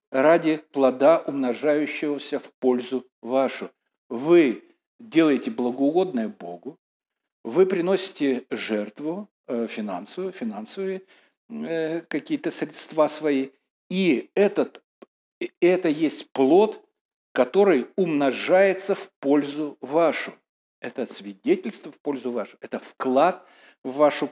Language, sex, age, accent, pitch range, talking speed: Russian, male, 60-79, native, 130-195 Hz, 90 wpm